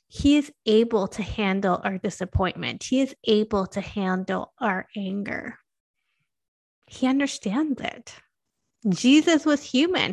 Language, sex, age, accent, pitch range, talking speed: English, female, 30-49, American, 205-265 Hz, 120 wpm